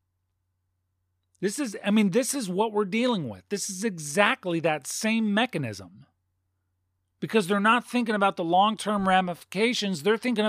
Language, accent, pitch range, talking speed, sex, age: English, American, 125-210 Hz, 150 wpm, male, 40-59